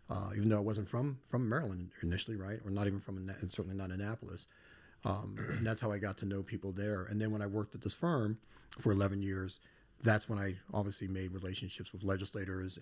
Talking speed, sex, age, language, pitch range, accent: 220 wpm, male, 40-59, English, 95-110 Hz, American